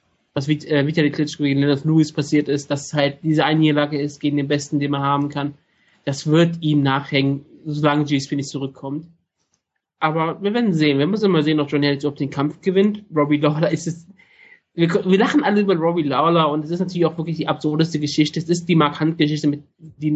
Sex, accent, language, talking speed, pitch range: male, German, German, 200 wpm, 145-165 Hz